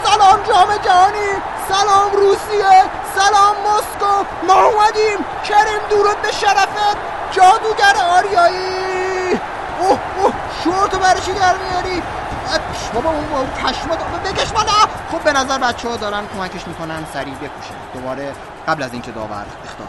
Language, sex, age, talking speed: Persian, male, 30-49, 130 wpm